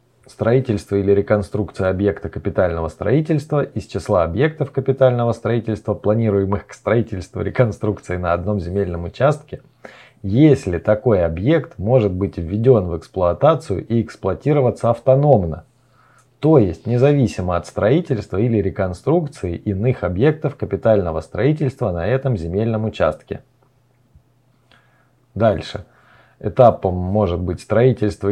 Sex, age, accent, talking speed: male, 20-39, native, 105 wpm